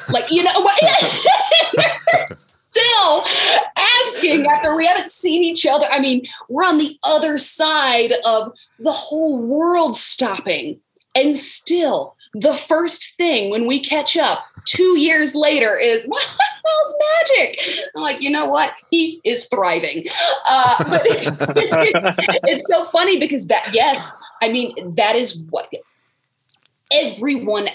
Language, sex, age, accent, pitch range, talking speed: English, female, 20-39, American, 185-305 Hz, 135 wpm